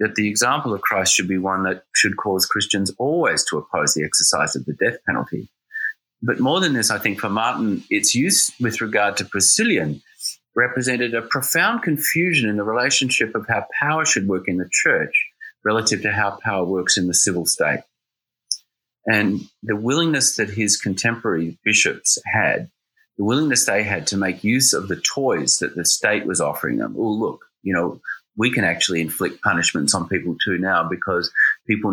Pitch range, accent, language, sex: 95-130 Hz, Australian, English, male